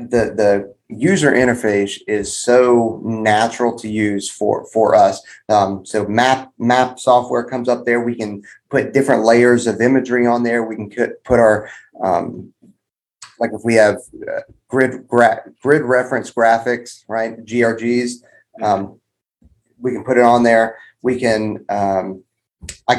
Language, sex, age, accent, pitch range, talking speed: English, male, 30-49, American, 115-130 Hz, 145 wpm